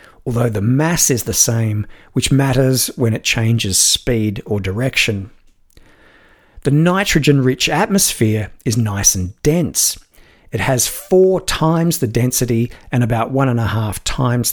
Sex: male